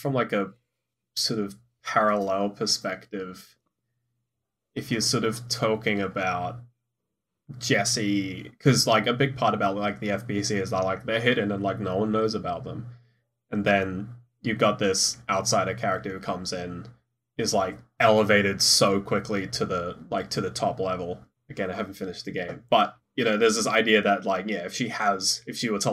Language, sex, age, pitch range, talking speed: English, male, 20-39, 100-120 Hz, 185 wpm